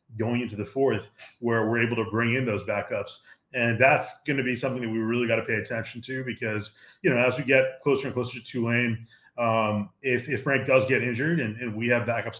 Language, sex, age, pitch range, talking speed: English, male, 30-49, 110-130 Hz, 235 wpm